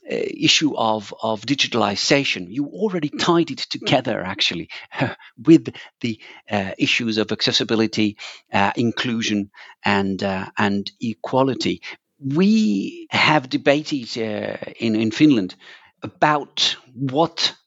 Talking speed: 105 wpm